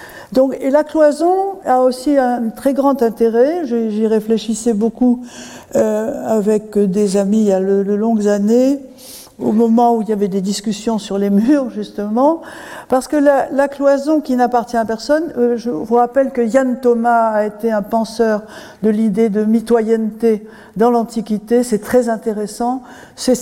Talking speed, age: 170 wpm, 60-79